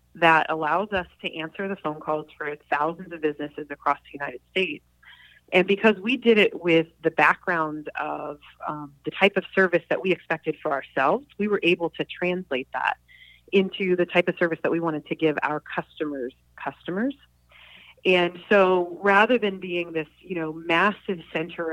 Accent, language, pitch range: American, English, 155-185 Hz